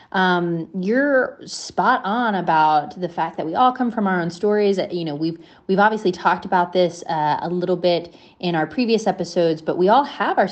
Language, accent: English, American